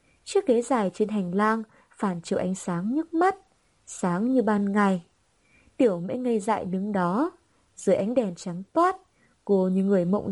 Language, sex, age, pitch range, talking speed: Vietnamese, female, 20-39, 190-250 Hz, 180 wpm